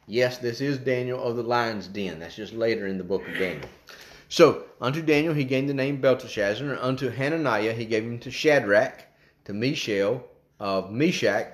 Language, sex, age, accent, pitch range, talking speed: English, male, 30-49, American, 115-150 Hz, 180 wpm